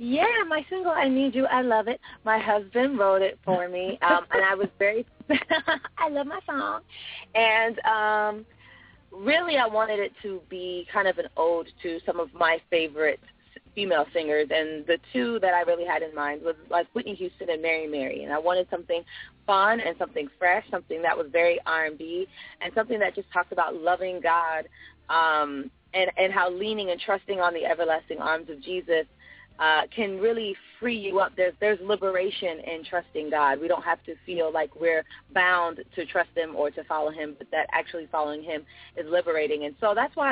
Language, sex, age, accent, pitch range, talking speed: English, female, 20-39, American, 160-220 Hz, 195 wpm